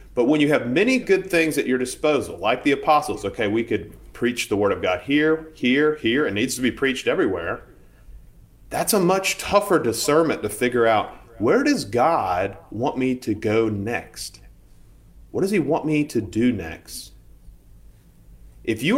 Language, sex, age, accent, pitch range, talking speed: English, male, 30-49, American, 100-155 Hz, 175 wpm